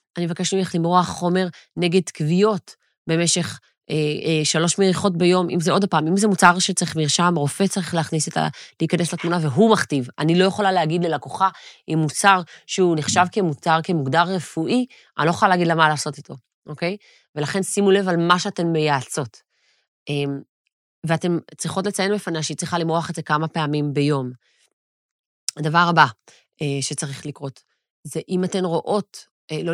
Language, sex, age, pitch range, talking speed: Hebrew, female, 30-49, 155-200 Hz, 155 wpm